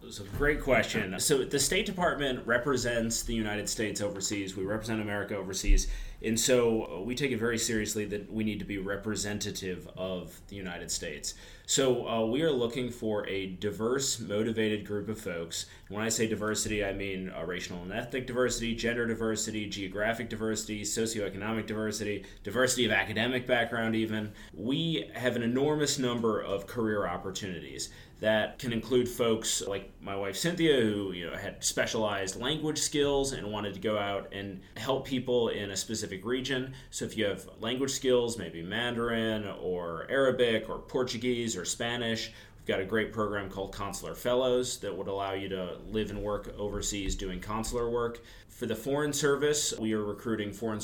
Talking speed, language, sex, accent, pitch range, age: 170 wpm, English, male, American, 100-125 Hz, 30-49